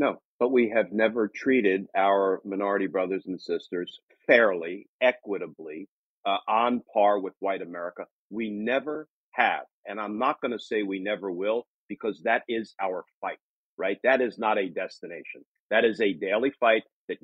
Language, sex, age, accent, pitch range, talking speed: English, male, 50-69, American, 110-145 Hz, 165 wpm